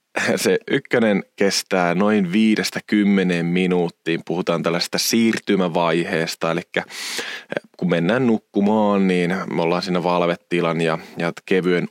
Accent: native